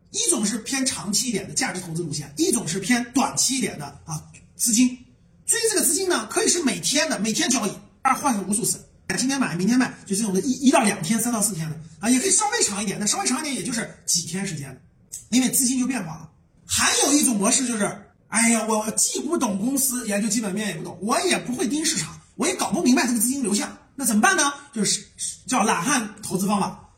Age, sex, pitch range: 30-49, male, 200-280 Hz